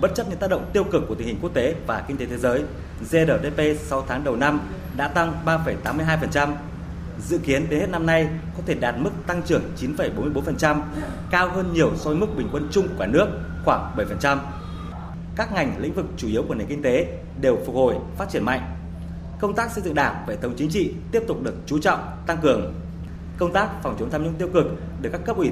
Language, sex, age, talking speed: Vietnamese, male, 20-39, 225 wpm